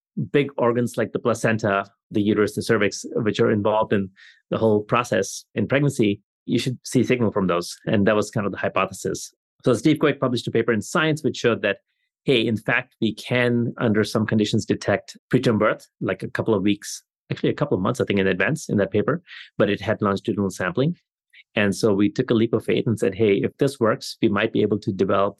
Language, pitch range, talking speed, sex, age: English, 100-120 Hz, 225 wpm, male, 30-49